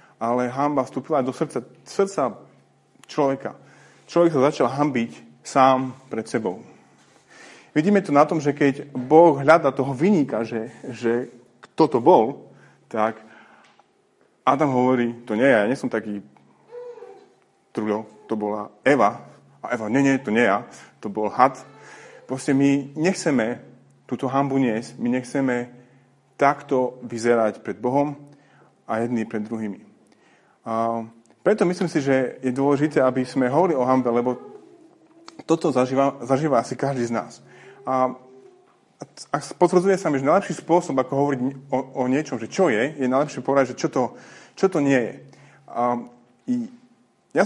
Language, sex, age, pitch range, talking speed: Slovak, male, 30-49, 125-160 Hz, 150 wpm